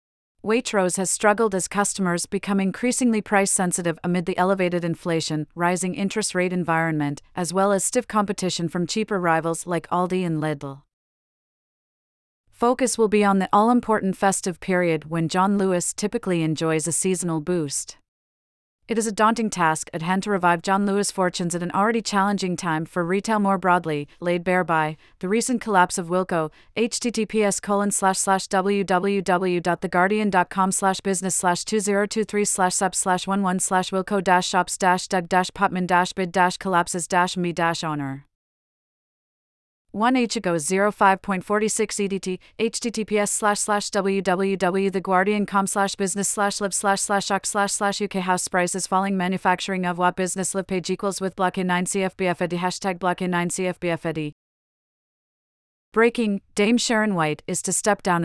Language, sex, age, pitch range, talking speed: English, female, 30-49, 175-200 Hz, 150 wpm